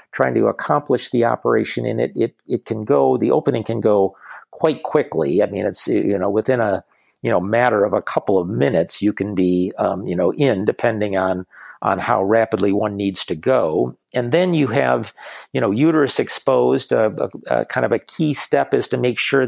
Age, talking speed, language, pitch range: 50-69, 215 wpm, English, 110-130 Hz